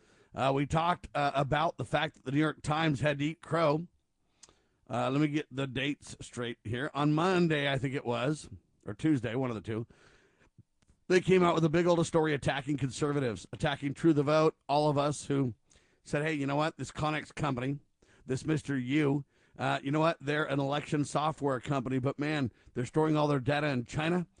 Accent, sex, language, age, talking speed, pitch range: American, male, English, 50-69, 200 wpm, 135-165 Hz